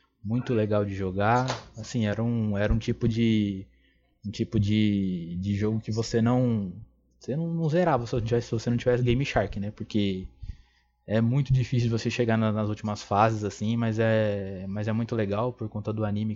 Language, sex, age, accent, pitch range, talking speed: Portuguese, male, 20-39, Brazilian, 100-115 Hz, 185 wpm